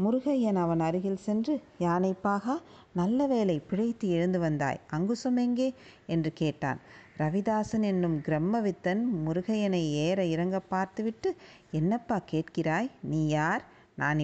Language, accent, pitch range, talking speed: Tamil, native, 170-230 Hz, 105 wpm